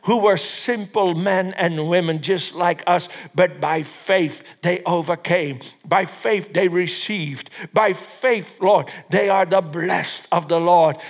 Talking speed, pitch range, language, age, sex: 150 wpm, 165-220 Hz, English, 60-79, male